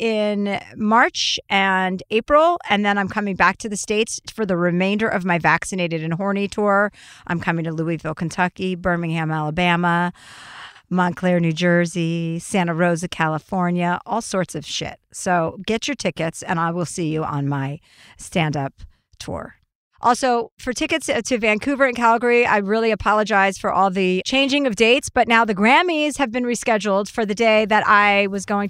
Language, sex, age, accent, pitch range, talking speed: English, female, 50-69, American, 180-230 Hz, 170 wpm